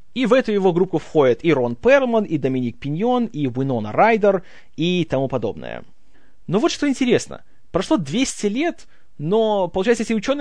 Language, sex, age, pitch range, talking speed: Russian, male, 20-39, 150-235 Hz, 165 wpm